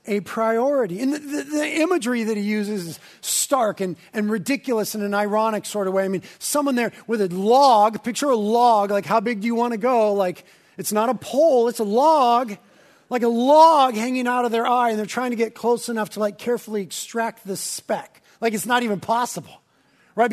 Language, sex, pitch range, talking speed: English, male, 220-300 Hz, 220 wpm